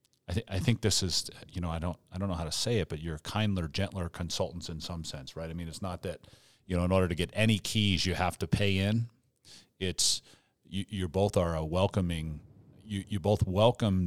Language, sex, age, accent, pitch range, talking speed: English, male, 40-59, American, 85-105 Hz, 235 wpm